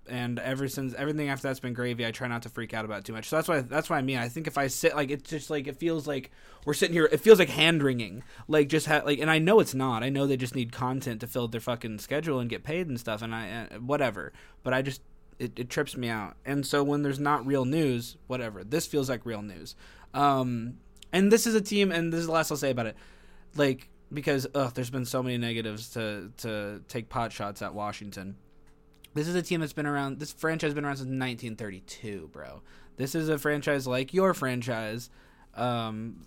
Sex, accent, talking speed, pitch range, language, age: male, American, 240 wpm, 110-145 Hz, English, 20-39